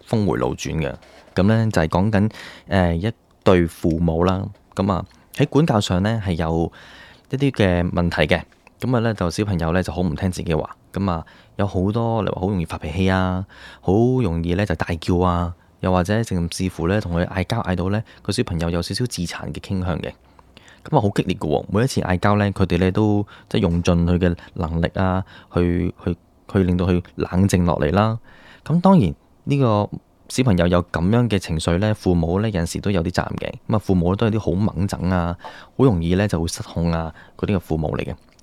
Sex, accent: male, native